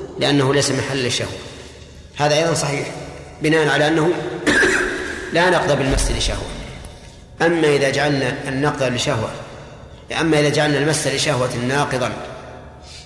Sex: male